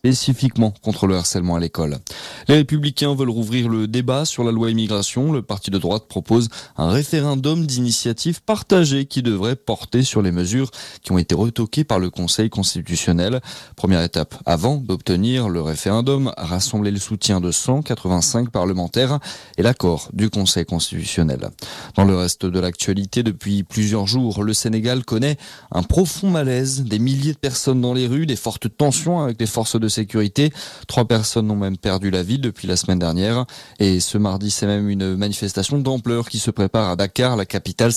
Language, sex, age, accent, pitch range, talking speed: French, male, 30-49, French, 100-135 Hz, 175 wpm